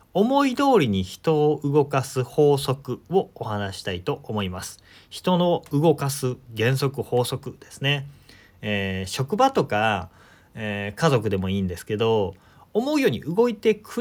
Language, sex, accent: Japanese, male, native